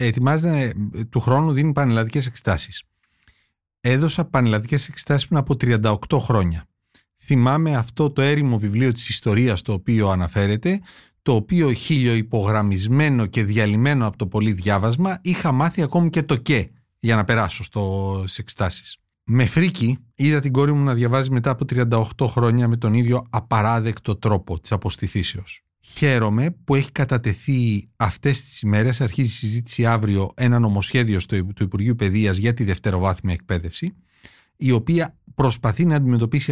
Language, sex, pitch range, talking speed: Greek, male, 105-140 Hz, 145 wpm